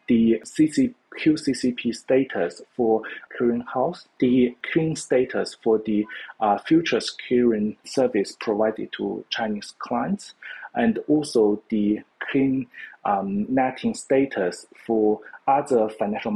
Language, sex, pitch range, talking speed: English, male, 110-150 Hz, 105 wpm